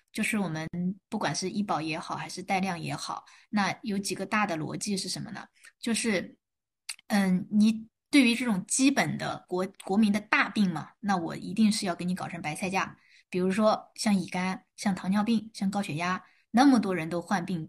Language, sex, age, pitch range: Chinese, female, 20-39, 185-235 Hz